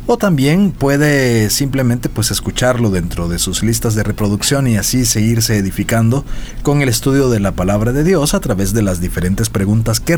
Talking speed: 185 wpm